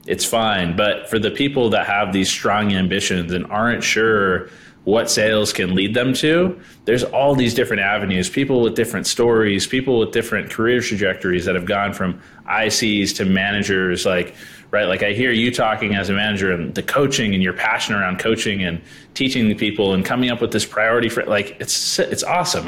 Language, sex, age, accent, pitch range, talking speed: English, male, 20-39, American, 95-125 Hz, 195 wpm